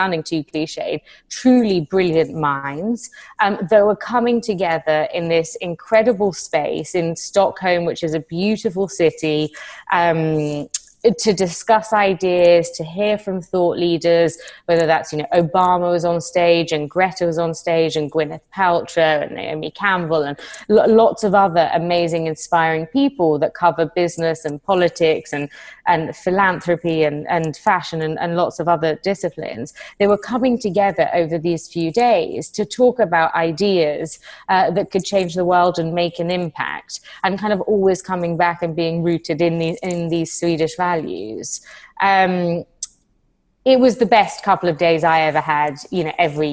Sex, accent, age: female, British, 20-39